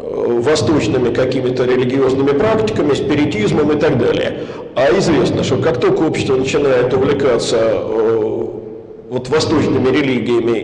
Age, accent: 50-69, native